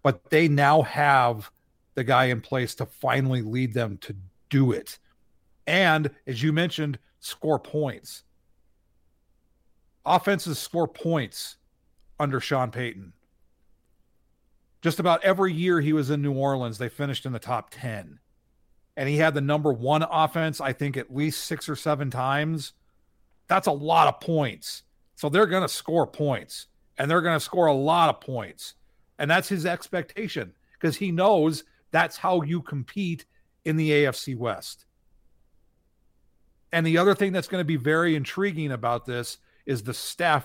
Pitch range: 120-165 Hz